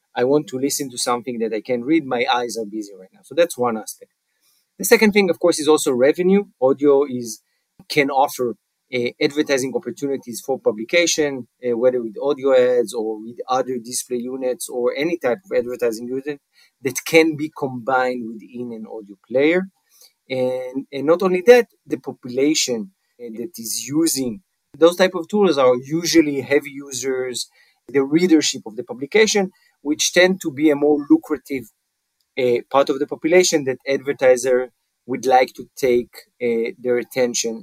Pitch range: 125-160 Hz